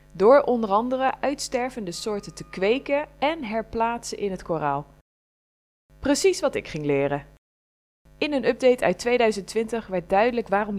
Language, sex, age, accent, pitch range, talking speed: Dutch, female, 20-39, Dutch, 180-255 Hz, 140 wpm